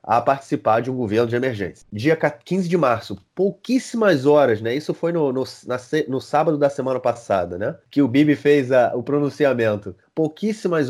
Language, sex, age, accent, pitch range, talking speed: Portuguese, male, 30-49, Brazilian, 120-165 Hz, 180 wpm